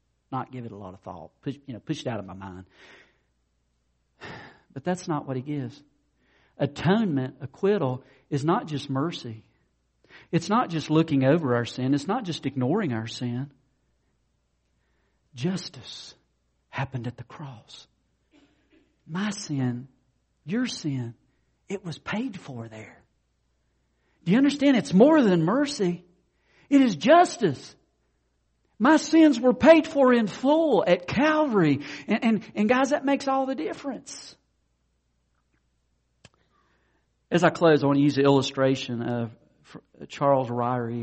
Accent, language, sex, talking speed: American, English, male, 140 wpm